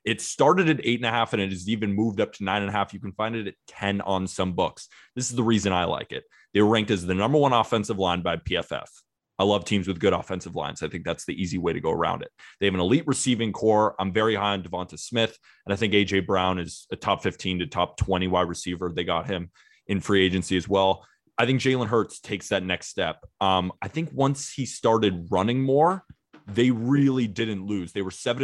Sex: male